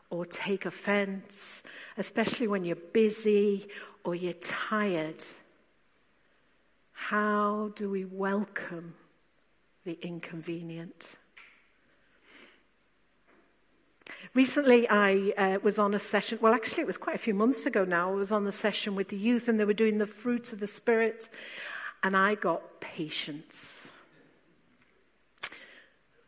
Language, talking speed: English, 125 wpm